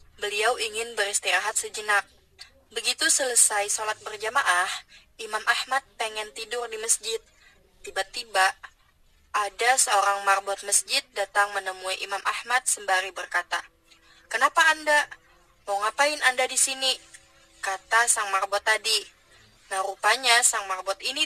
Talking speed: 115 wpm